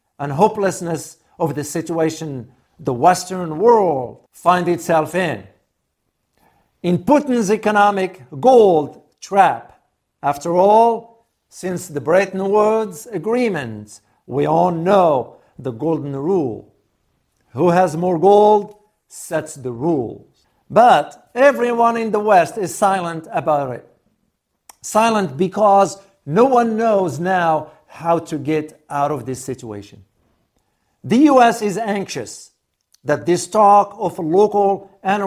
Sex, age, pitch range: male, 50-69, 150-205 Hz